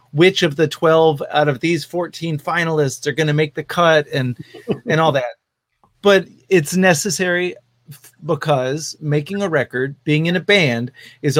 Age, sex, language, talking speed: 30-49, male, English, 165 wpm